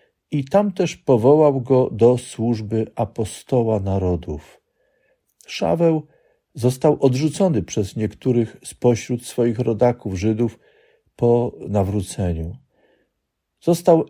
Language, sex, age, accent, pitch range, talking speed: Polish, male, 50-69, native, 105-145 Hz, 90 wpm